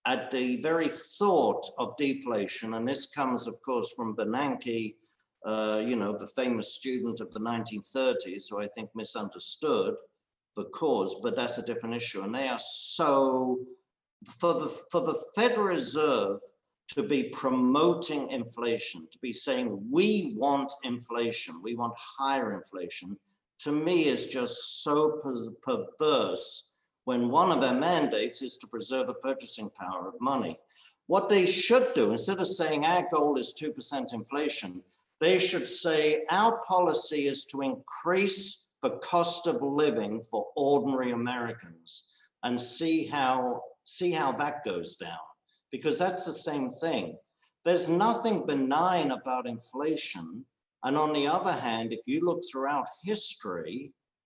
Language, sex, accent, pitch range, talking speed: English, male, British, 120-175 Hz, 145 wpm